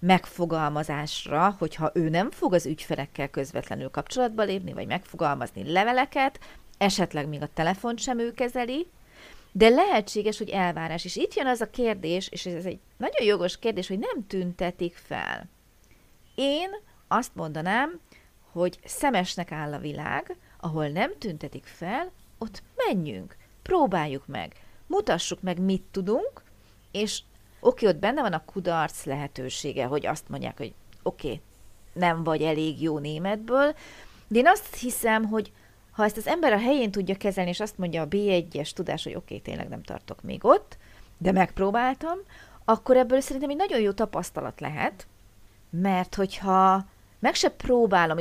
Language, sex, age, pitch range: Hungarian, female, 40-59, 160-240 Hz